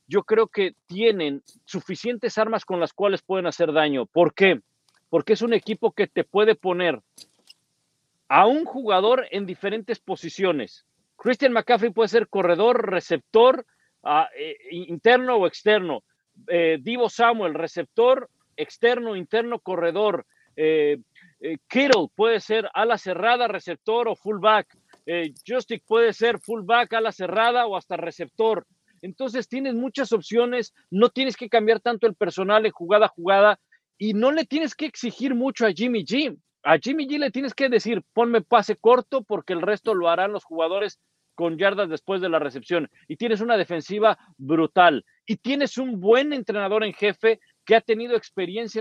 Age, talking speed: 50-69, 155 wpm